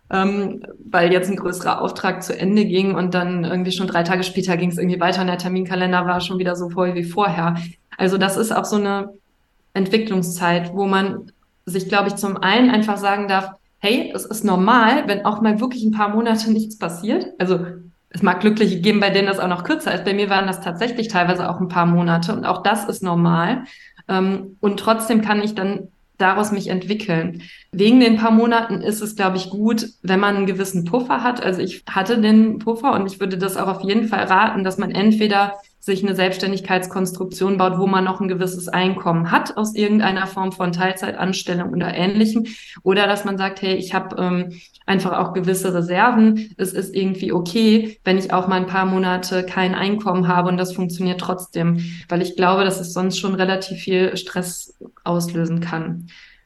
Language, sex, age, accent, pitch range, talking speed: German, female, 20-39, German, 180-205 Hz, 195 wpm